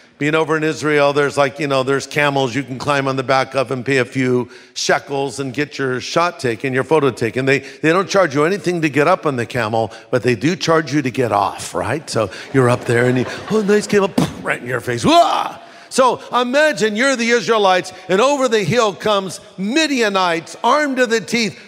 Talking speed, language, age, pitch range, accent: 225 wpm, English, 50-69, 150-215 Hz, American